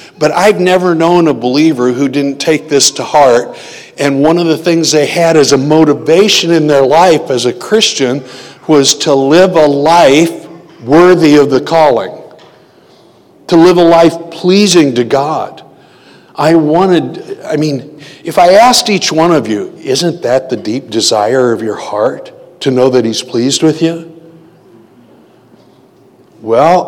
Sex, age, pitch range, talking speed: male, 60-79, 125-165 Hz, 160 wpm